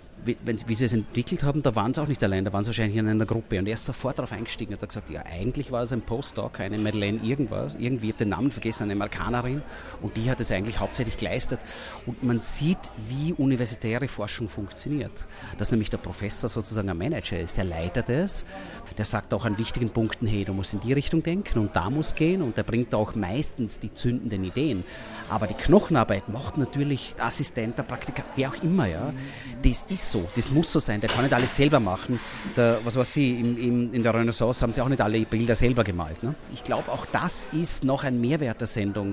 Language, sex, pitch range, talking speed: German, male, 110-140 Hz, 225 wpm